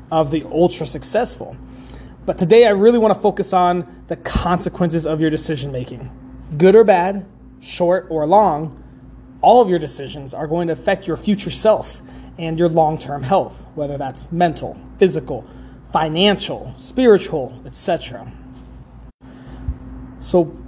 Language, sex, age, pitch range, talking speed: English, male, 20-39, 155-205 Hz, 140 wpm